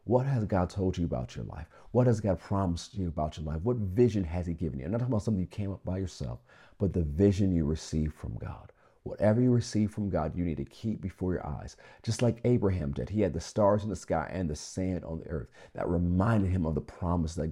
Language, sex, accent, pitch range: English, male, American, 80-105 Hz